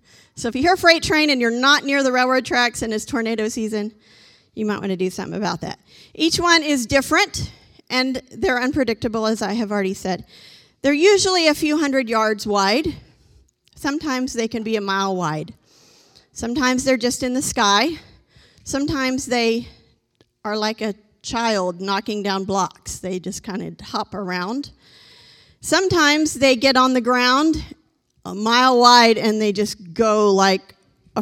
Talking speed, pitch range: 170 wpm, 210-270 Hz